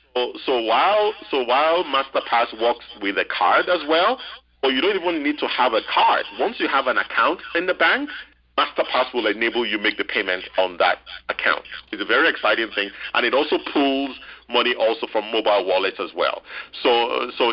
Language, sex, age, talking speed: English, male, 50-69, 200 wpm